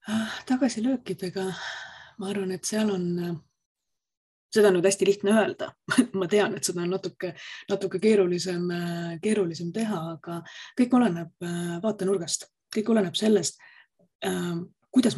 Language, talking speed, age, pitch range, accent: English, 120 wpm, 30-49, 175-215 Hz, Finnish